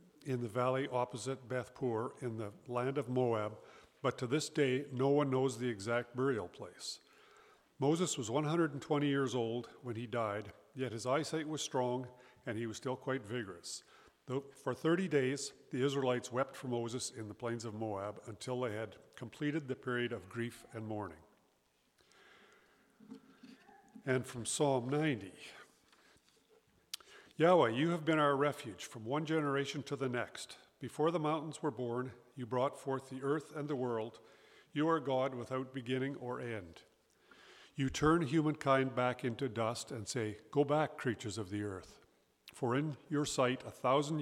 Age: 50-69